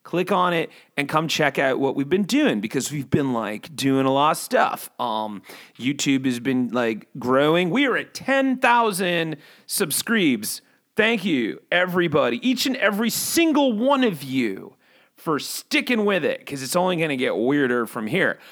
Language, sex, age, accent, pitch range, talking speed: English, male, 30-49, American, 135-200 Hz, 170 wpm